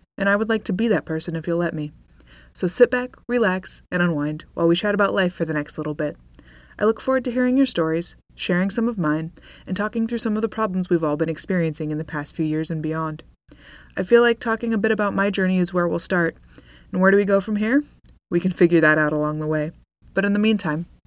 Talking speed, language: 255 wpm, English